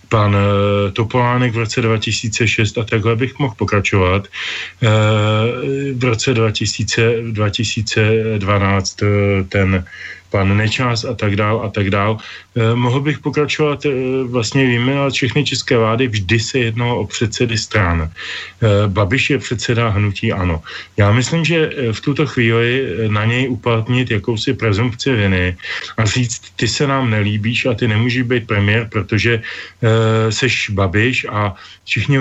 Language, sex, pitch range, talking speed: Slovak, male, 105-130 Hz, 135 wpm